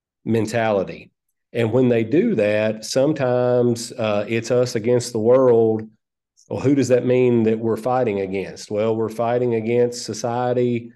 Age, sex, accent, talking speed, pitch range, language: 40-59, male, American, 150 wpm, 110-125 Hz, English